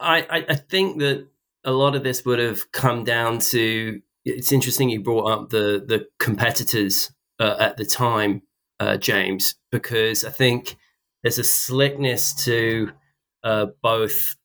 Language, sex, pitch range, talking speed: English, male, 105-135 Hz, 150 wpm